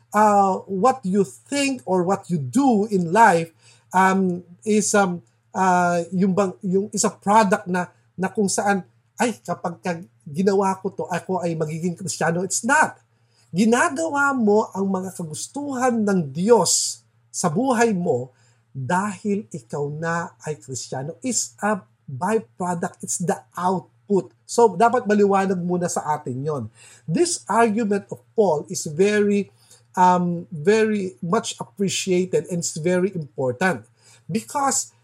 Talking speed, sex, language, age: 135 wpm, male, English, 50-69